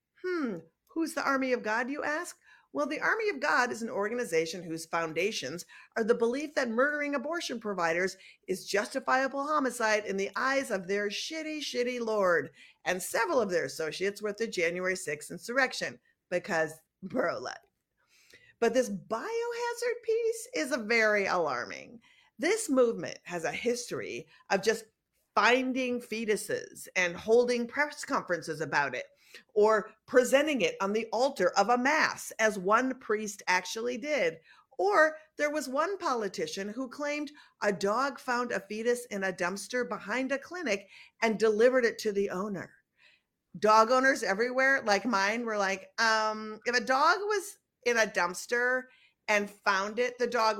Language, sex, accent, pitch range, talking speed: English, female, American, 195-270 Hz, 155 wpm